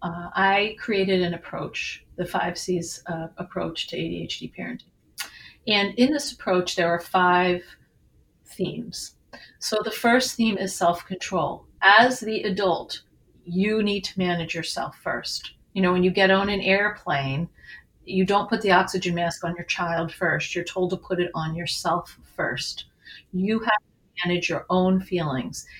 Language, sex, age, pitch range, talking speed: English, female, 40-59, 175-200 Hz, 160 wpm